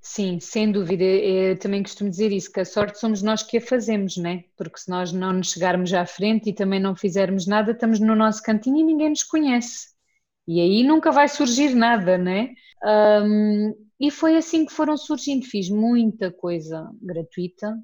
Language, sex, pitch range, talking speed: Portuguese, female, 180-220 Hz, 190 wpm